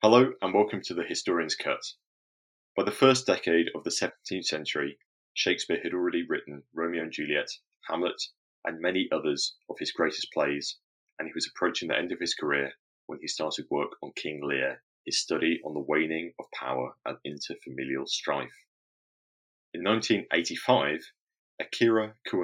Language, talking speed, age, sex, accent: English, 155 wpm, 30-49, male, British